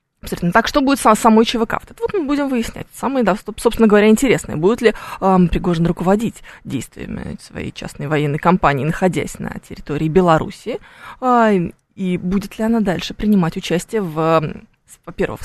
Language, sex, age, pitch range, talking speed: Russian, female, 20-39, 185-245 Hz, 150 wpm